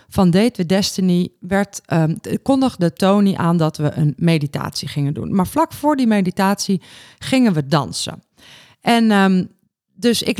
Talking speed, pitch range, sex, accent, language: 155 wpm, 165-215 Hz, female, Dutch, Dutch